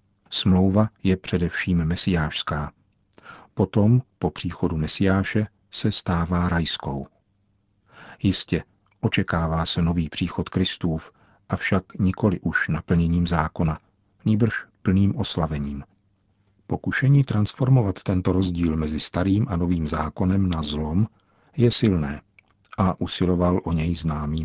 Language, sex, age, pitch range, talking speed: Czech, male, 50-69, 85-100 Hz, 105 wpm